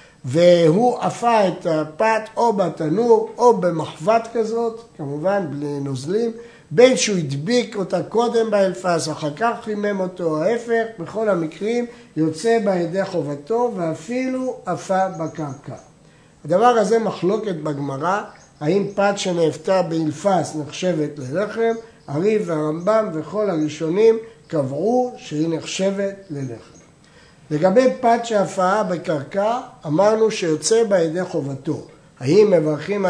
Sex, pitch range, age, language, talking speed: male, 155-225 Hz, 60-79, Hebrew, 110 wpm